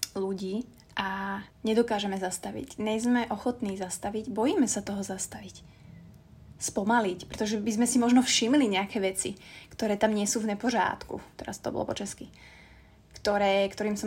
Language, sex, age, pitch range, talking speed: Slovak, female, 20-39, 195-230 Hz, 145 wpm